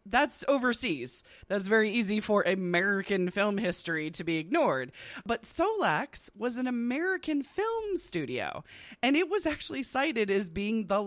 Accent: American